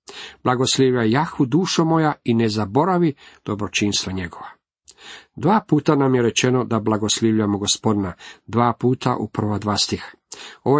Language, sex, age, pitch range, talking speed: Croatian, male, 50-69, 110-140 Hz, 120 wpm